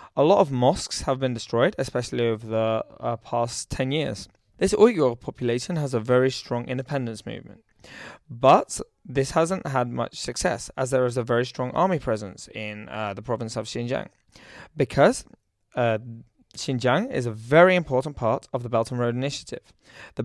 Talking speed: 170 wpm